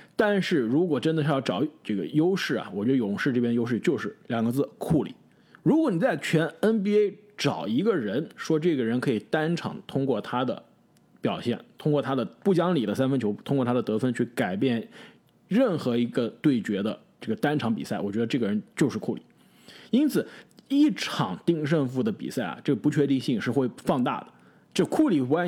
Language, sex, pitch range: Chinese, male, 130-210 Hz